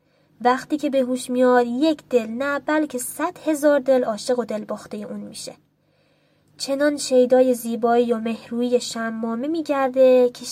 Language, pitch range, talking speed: Persian, 230-270 Hz, 150 wpm